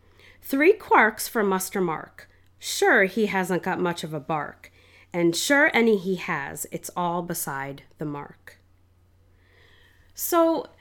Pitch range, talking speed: 185-255 Hz, 135 wpm